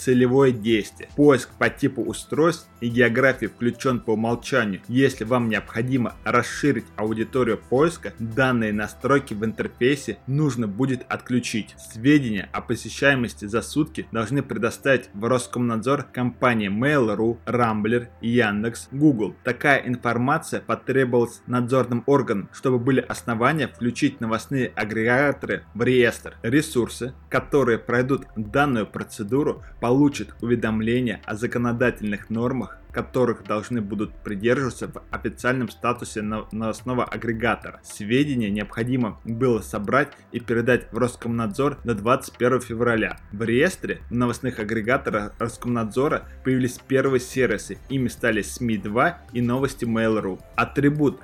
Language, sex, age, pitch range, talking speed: Russian, male, 20-39, 110-130 Hz, 115 wpm